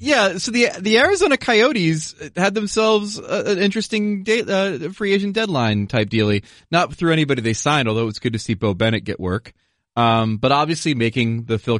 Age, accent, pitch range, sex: 30-49, American, 105-145 Hz, male